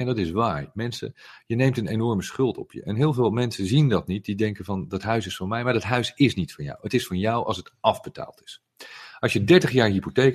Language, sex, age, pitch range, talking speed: Dutch, male, 40-59, 95-125 Hz, 275 wpm